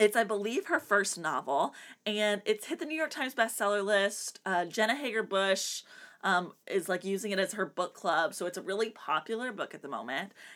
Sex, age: female, 20-39